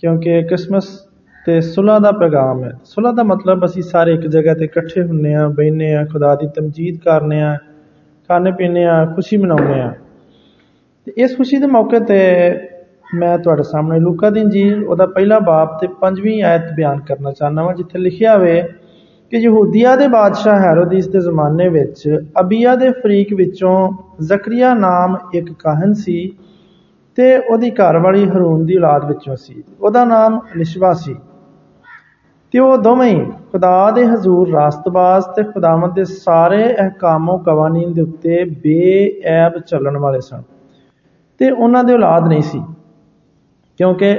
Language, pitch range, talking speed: Hindi, 160-200 Hz, 120 wpm